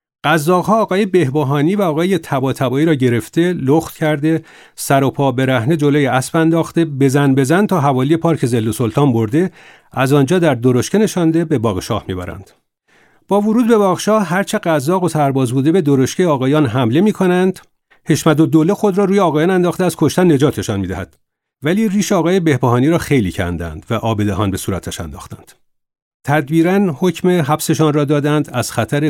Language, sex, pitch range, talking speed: Persian, male, 115-165 Hz, 170 wpm